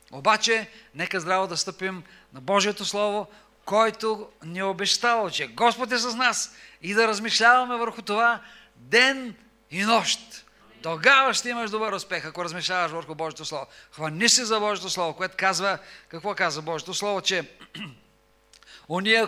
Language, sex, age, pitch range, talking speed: English, male, 40-59, 185-235 Hz, 145 wpm